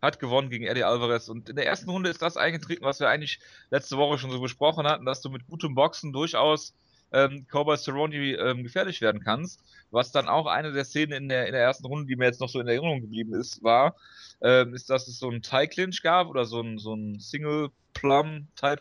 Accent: German